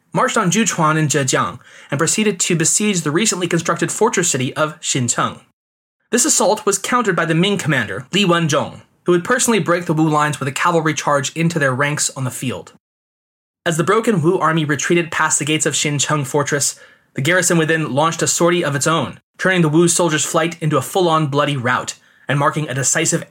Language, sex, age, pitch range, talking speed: English, male, 20-39, 145-180 Hz, 200 wpm